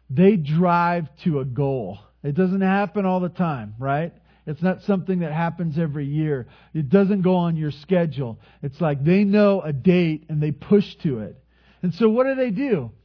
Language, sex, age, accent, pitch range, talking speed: English, male, 40-59, American, 140-190 Hz, 195 wpm